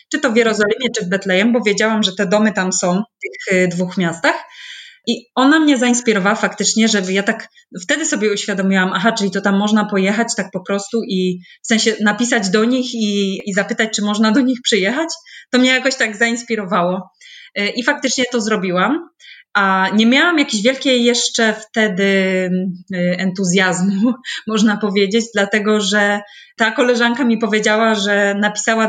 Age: 20-39